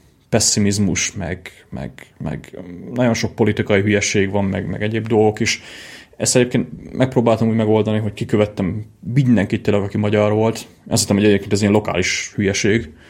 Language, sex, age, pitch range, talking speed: Hungarian, male, 30-49, 100-115 Hz, 155 wpm